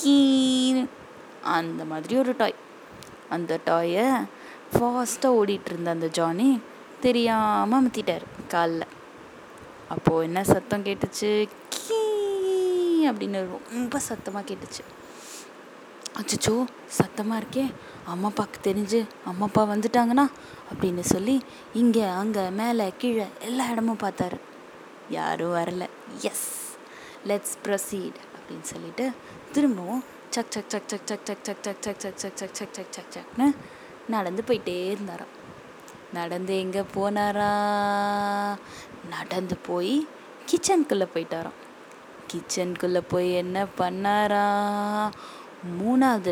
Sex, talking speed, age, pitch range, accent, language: female, 100 wpm, 20-39, 190-245 Hz, native, Tamil